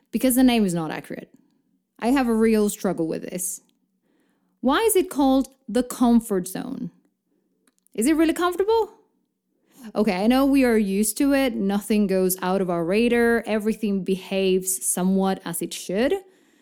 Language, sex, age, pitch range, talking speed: English, female, 20-39, 195-275 Hz, 160 wpm